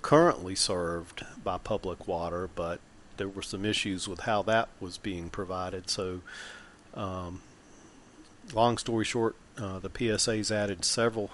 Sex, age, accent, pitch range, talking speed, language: male, 40-59, American, 95-110 Hz, 140 wpm, English